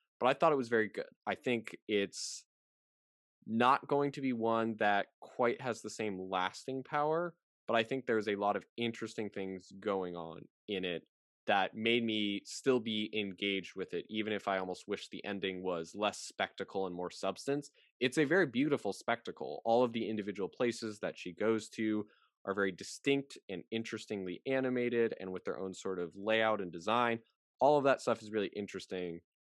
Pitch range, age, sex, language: 95-115 Hz, 20-39, male, English